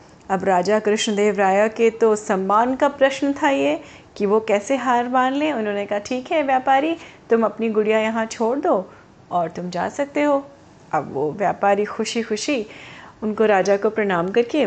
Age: 30-49